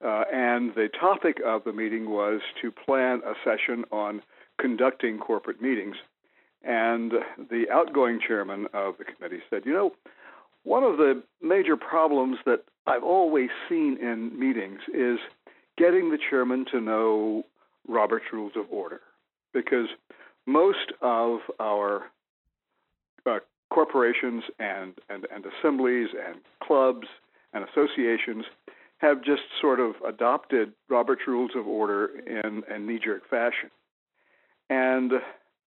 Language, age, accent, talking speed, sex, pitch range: English, 60-79, American, 125 wpm, male, 110-130 Hz